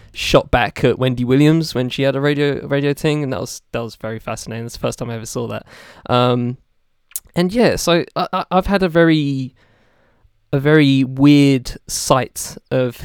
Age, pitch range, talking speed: 20-39, 130-165 Hz, 195 wpm